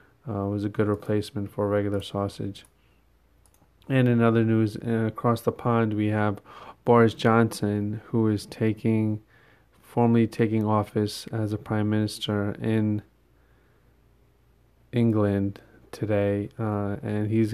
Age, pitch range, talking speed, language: 20-39, 105-115 Hz, 120 wpm, English